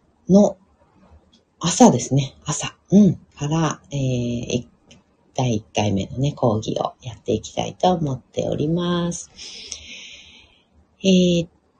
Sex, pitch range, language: female, 125-180 Hz, Japanese